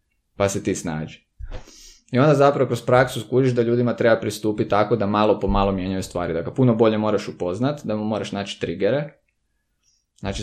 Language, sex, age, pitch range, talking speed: Croatian, male, 20-39, 95-120 Hz, 185 wpm